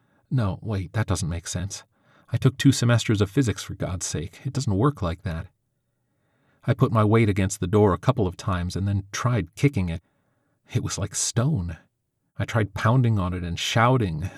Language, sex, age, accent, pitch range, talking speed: English, male, 40-59, American, 95-130 Hz, 195 wpm